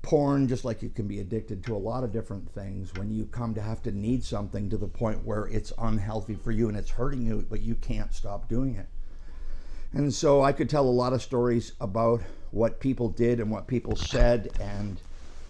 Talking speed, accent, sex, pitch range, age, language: 220 wpm, American, male, 100-115 Hz, 50-69, English